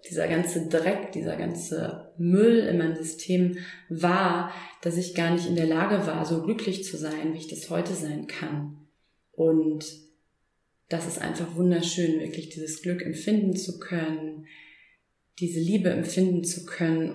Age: 30-49